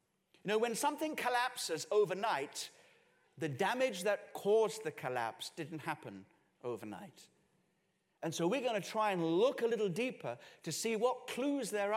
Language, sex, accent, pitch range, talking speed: English, male, British, 160-220 Hz, 155 wpm